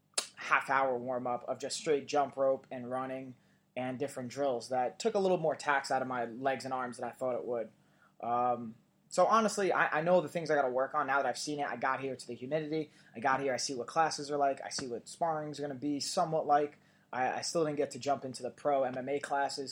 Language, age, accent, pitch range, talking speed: English, 20-39, American, 125-160 Hz, 255 wpm